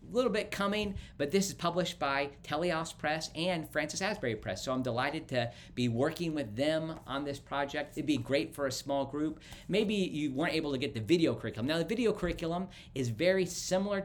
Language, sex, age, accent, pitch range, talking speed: English, male, 50-69, American, 115-160 Hz, 205 wpm